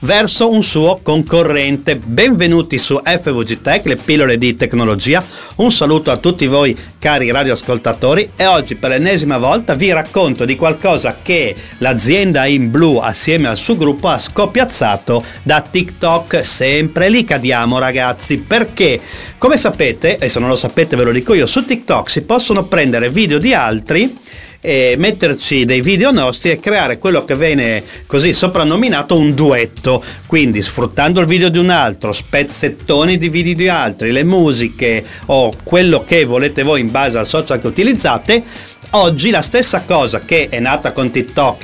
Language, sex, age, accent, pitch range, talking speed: Italian, male, 40-59, native, 125-175 Hz, 160 wpm